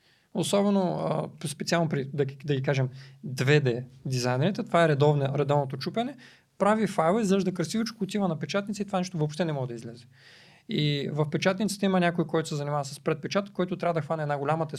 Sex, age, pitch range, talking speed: male, 40-59, 135-195 Hz, 190 wpm